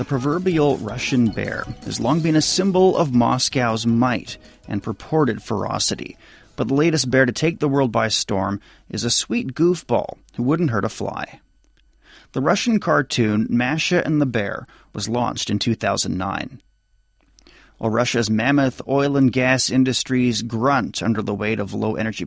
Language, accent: Chinese, American